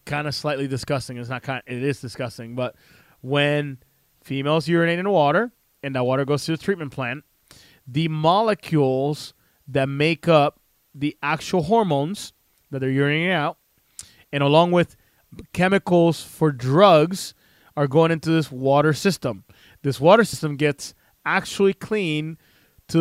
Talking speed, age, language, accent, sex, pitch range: 135 wpm, 20-39, English, American, male, 140-170 Hz